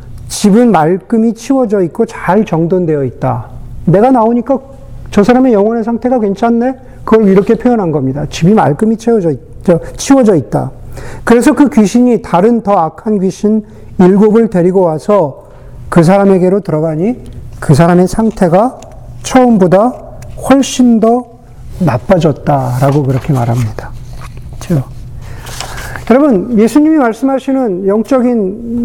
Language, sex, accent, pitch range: Korean, male, native, 150-230 Hz